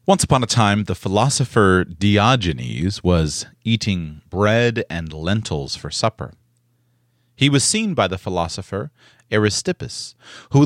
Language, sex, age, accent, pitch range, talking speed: English, male, 30-49, American, 95-125 Hz, 125 wpm